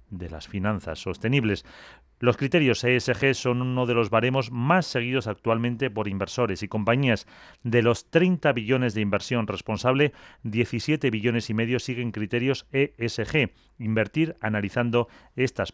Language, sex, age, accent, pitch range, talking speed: Spanish, male, 30-49, Spanish, 110-130 Hz, 135 wpm